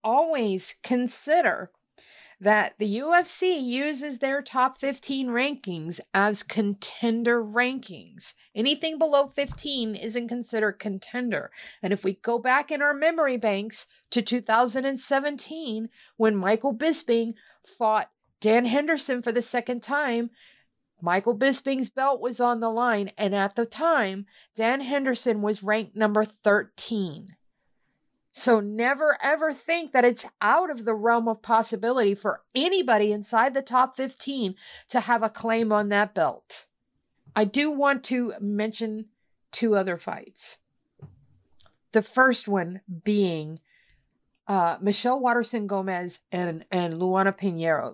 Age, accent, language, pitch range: 50-69, American, English, 205-260 Hz